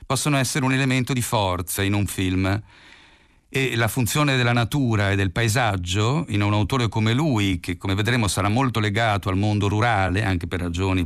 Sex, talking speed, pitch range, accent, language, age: male, 185 wpm, 100-130 Hz, native, Italian, 50-69